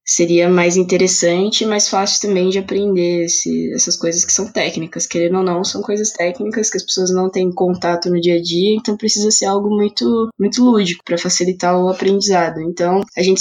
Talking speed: 200 wpm